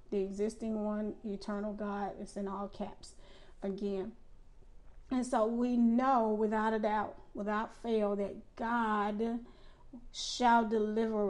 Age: 40-59